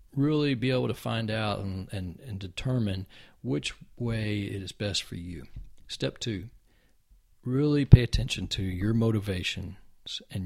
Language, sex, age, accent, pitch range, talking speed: English, male, 40-59, American, 95-115 Hz, 145 wpm